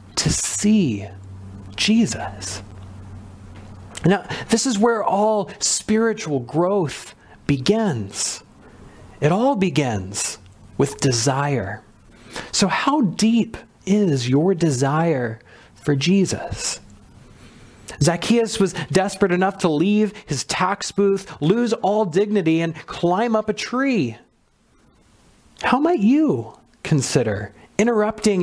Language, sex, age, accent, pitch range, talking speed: English, male, 40-59, American, 125-200 Hz, 95 wpm